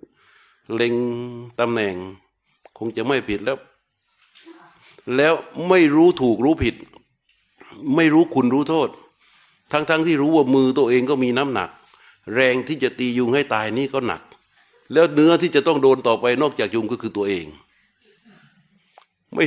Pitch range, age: 120-160 Hz, 60-79